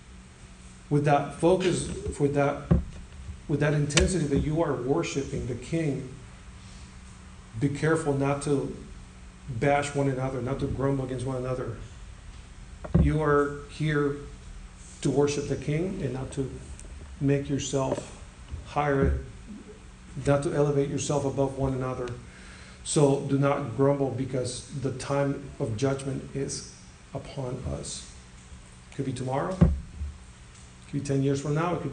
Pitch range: 115-145 Hz